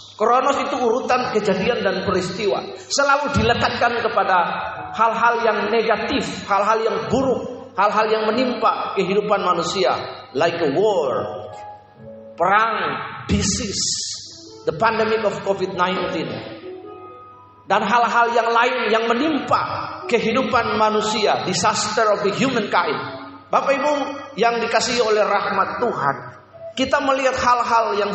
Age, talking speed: 40-59, 110 wpm